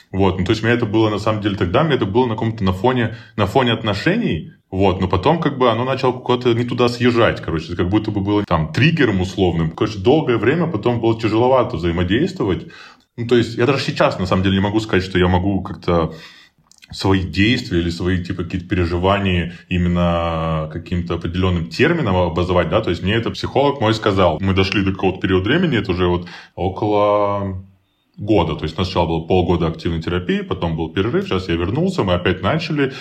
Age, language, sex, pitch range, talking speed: 20-39, Russian, male, 90-115 Hz, 205 wpm